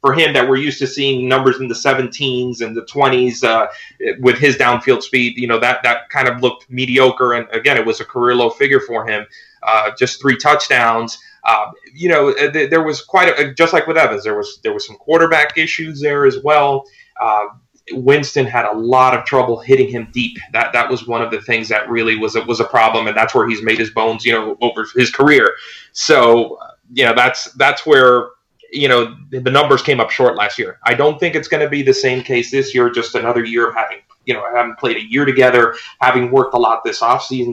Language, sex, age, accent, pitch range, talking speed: English, male, 30-49, American, 115-145 Hz, 230 wpm